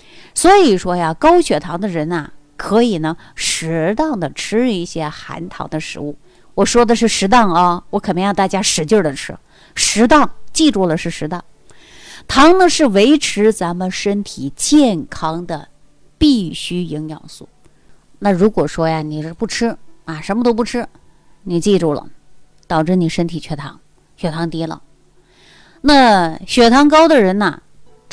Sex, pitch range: female, 160-225 Hz